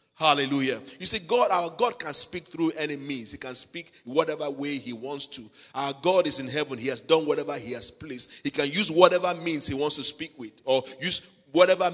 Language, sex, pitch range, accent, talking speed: English, male, 130-165 Hz, Nigerian, 220 wpm